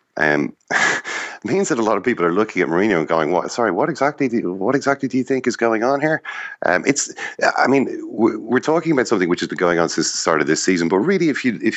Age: 40-59